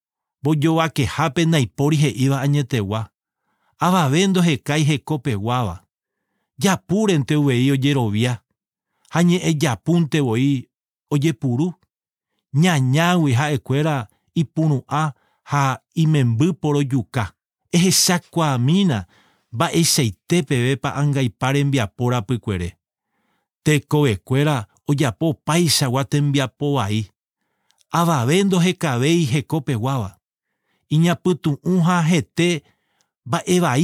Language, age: English, 40-59